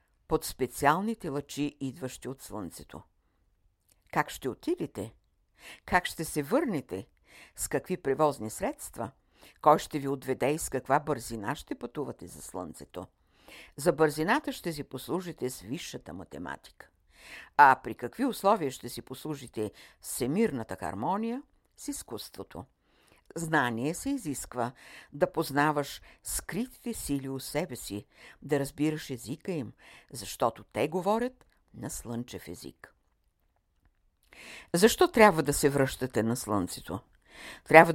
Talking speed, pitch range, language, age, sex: 120 wpm, 125-170 Hz, Bulgarian, 60-79, female